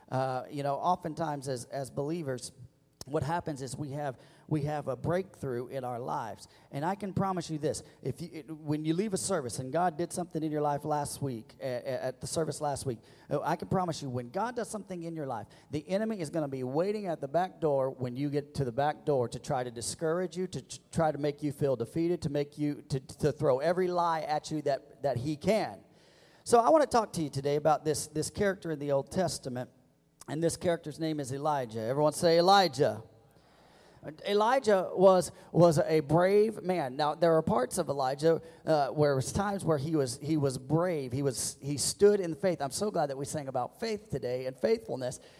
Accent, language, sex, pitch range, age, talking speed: American, English, male, 145-195 Hz, 40-59, 220 wpm